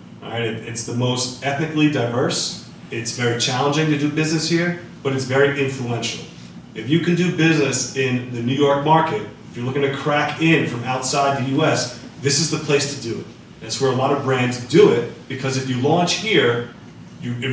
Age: 30-49